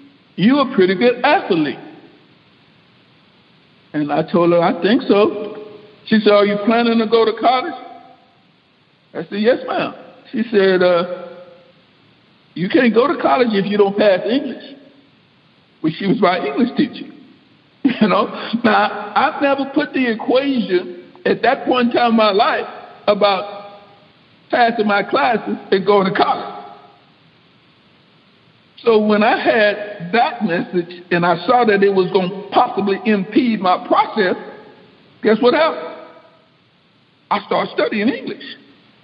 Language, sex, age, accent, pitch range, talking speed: English, male, 60-79, American, 205-255 Hz, 145 wpm